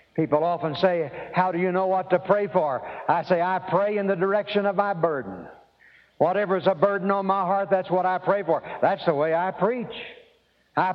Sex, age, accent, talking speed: male, 60-79, American, 215 wpm